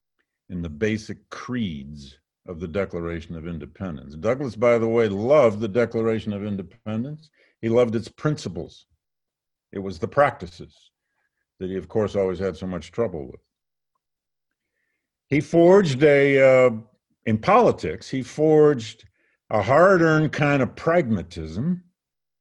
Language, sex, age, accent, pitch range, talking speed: English, male, 50-69, American, 105-150 Hz, 130 wpm